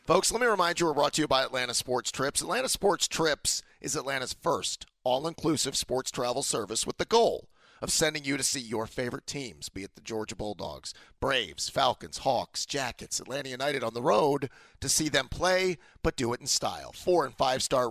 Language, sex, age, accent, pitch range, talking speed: English, male, 40-59, American, 115-150 Hz, 200 wpm